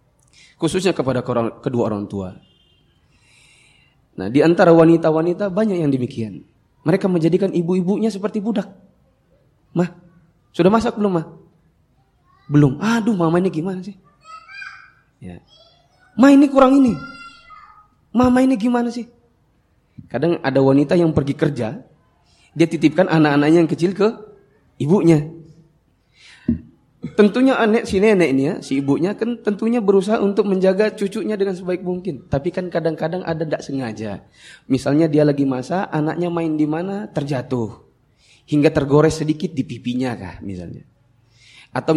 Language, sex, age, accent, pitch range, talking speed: Indonesian, male, 20-39, native, 135-200 Hz, 125 wpm